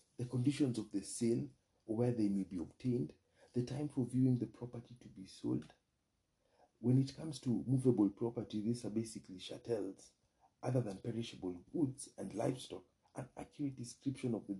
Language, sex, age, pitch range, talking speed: English, male, 50-69, 95-120 Hz, 170 wpm